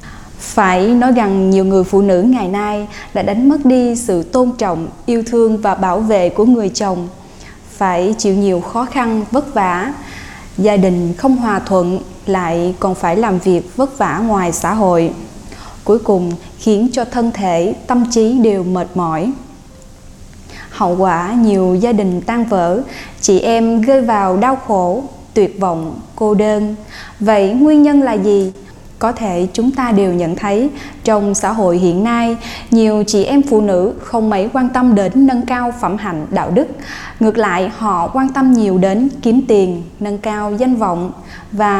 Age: 10-29